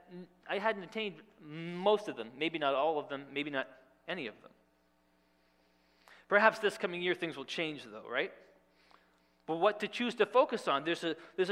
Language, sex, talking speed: English, male, 180 wpm